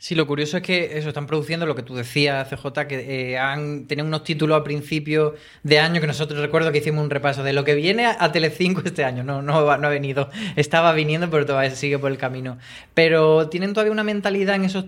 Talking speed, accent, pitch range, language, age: 235 wpm, Spanish, 135-160 Hz, Spanish, 20-39